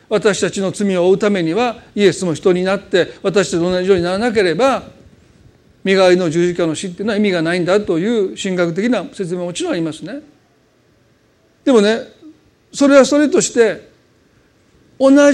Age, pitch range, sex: 40-59, 195-260 Hz, male